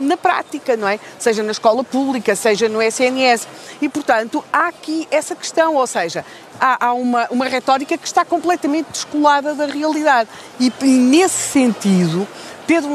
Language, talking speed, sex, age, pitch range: Portuguese, 160 wpm, female, 40-59, 215-290 Hz